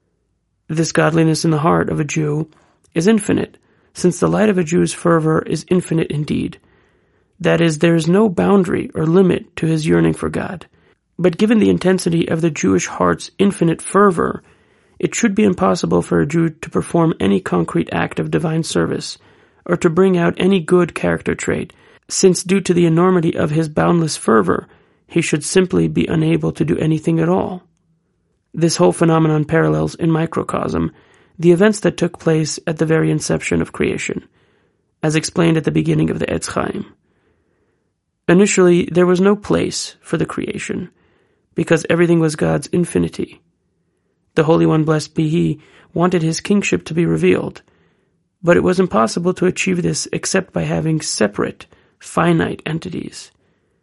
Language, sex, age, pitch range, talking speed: English, male, 30-49, 155-180 Hz, 165 wpm